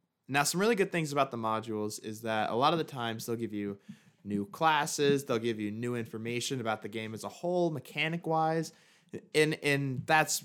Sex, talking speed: male, 200 wpm